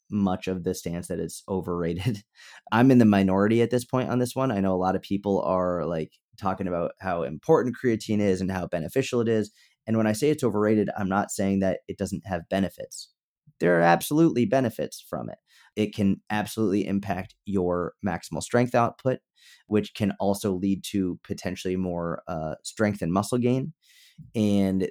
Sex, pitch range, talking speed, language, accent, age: male, 95-115 Hz, 185 wpm, English, American, 30-49